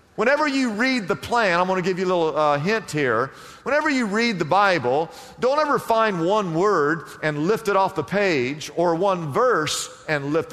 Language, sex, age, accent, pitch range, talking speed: English, male, 50-69, American, 185-250 Hz, 205 wpm